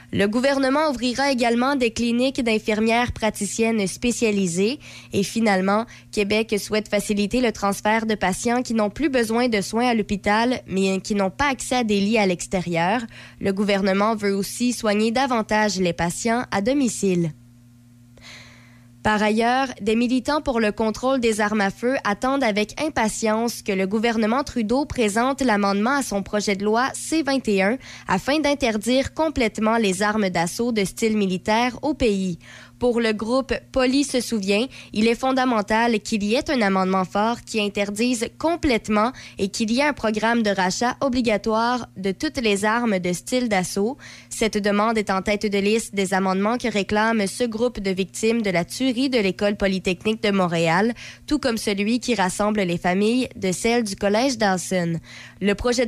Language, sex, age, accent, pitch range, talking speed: French, female, 20-39, Canadian, 200-240 Hz, 165 wpm